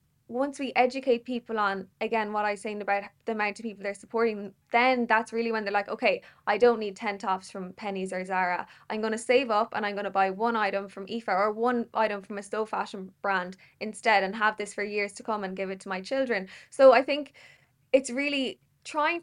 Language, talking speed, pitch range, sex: English, 235 wpm, 200-235 Hz, female